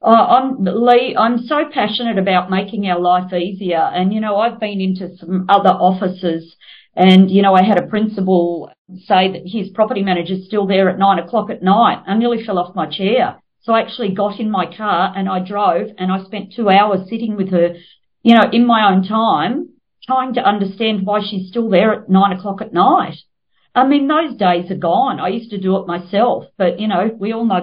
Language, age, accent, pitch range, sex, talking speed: English, 40-59, Australian, 180-220 Hz, female, 215 wpm